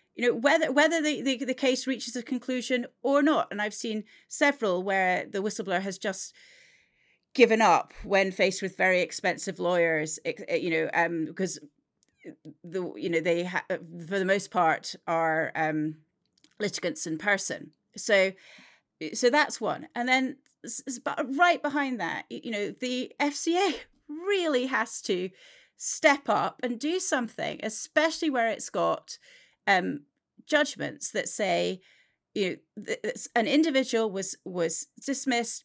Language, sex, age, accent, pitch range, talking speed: English, female, 30-49, British, 190-285 Hz, 150 wpm